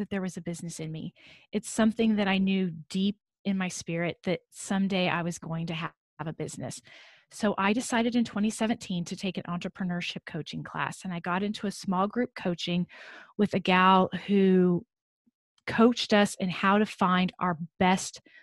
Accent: American